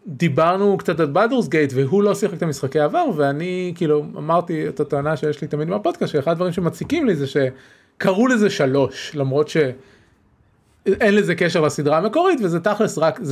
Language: Hebrew